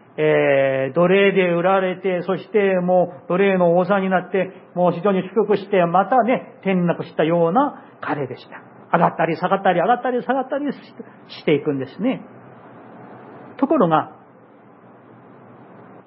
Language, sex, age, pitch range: Japanese, male, 40-59, 170-255 Hz